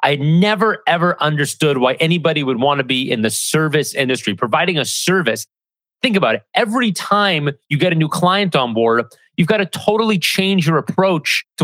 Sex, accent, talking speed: male, American, 190 wpm